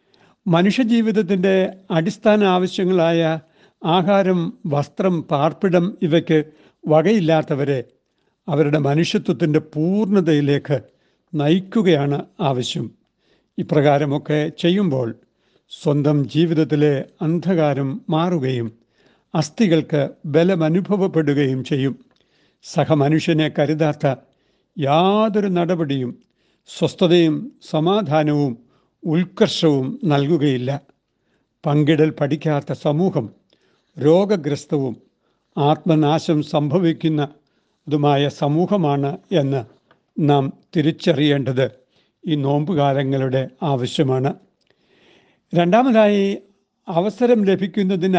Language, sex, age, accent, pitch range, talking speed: Malayalam, male, 60-79, native, 145-185 Hz, 55 wpm